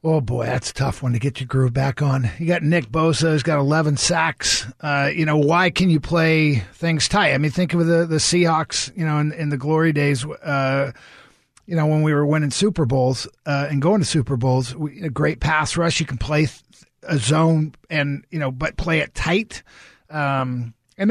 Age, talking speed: 50-69, 220 wpm